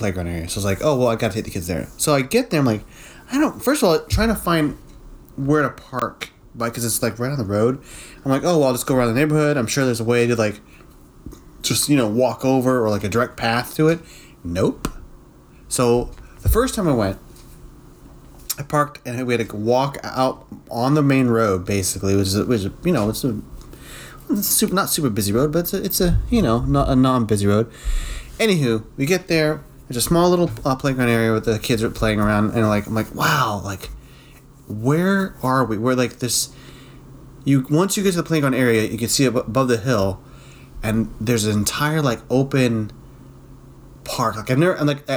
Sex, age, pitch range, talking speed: male, 30-49, 110-145 Hz, 220 wpm